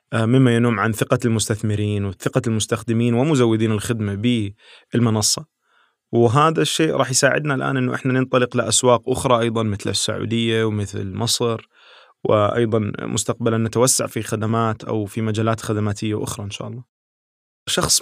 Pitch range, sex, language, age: 105-125 Hz, male, Arabic, 20-39